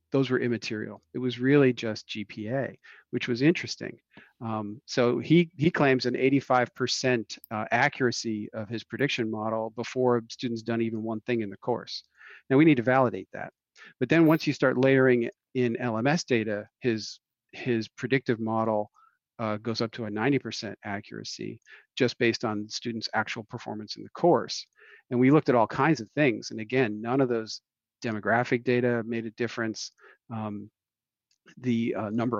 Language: English